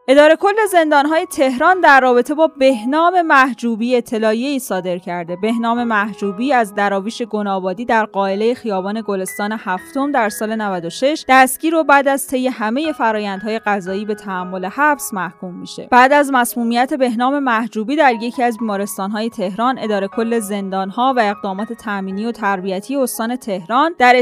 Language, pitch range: Persian, 210-270 Hz